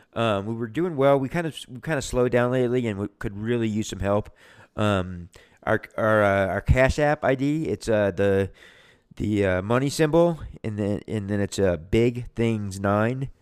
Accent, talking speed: American, 205 wpm